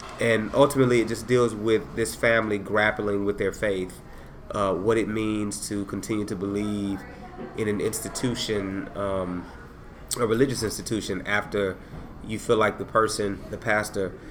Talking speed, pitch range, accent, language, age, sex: 145 wpm, 100-115 Hz, American, English, 30-49, male